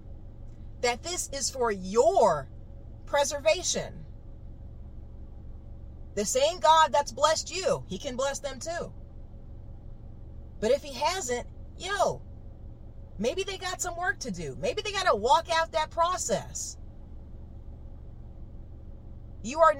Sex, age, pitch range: female, 30-49, 245-335 Hz